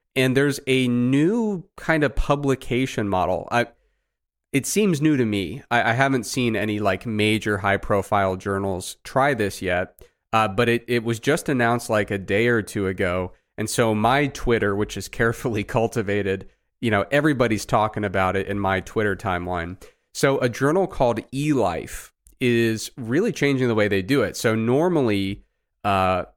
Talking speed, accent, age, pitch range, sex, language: 170 wpm, American, 30-49, 100-130 Hz, male, English